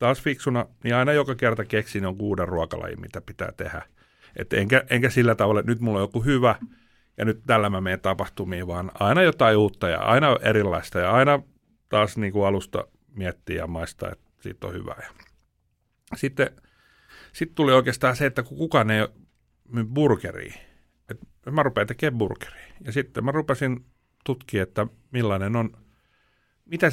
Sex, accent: male, native